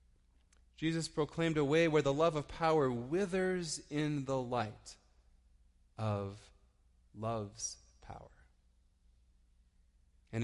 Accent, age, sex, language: American, 30-49, male, English